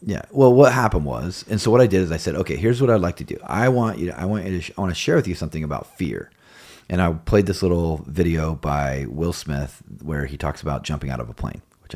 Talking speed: 285 wpm